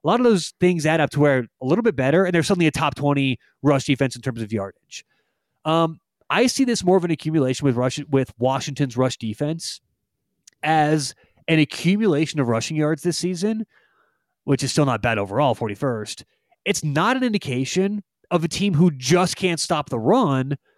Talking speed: 195 wpm